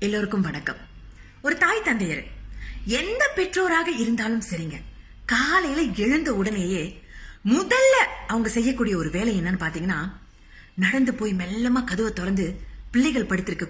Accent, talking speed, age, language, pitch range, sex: native, 55 wpm, 30-49, Tamil, 180-280 Hz, female